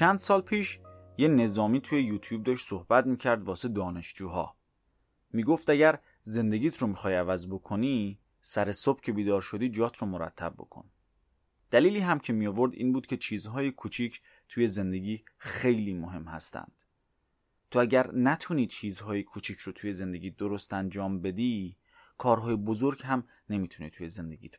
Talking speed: 145 wpm